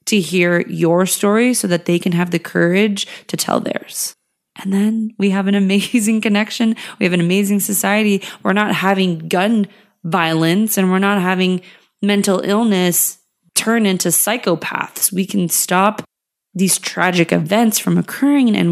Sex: female